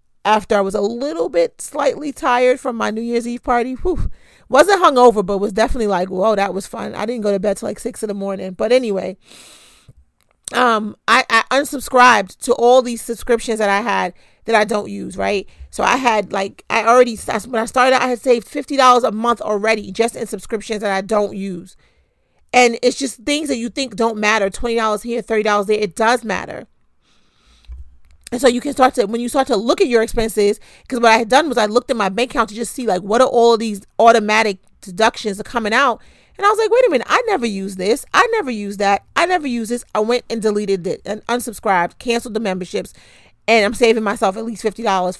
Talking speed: 225 wpm